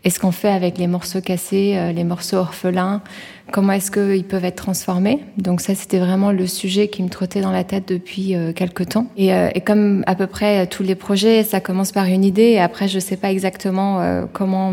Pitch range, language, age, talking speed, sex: 185-205 Hz, French, 20-39, 215 wpm, female